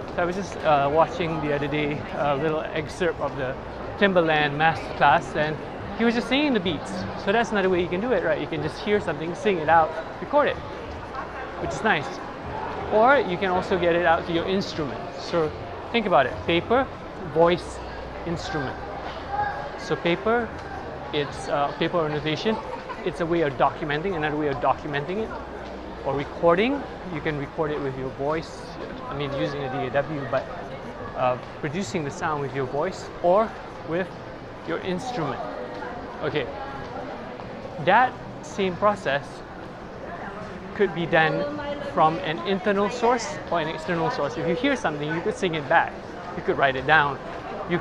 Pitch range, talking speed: 155-200 Hz, 165 wpm